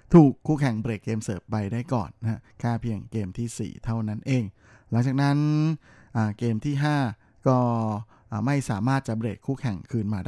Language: Thai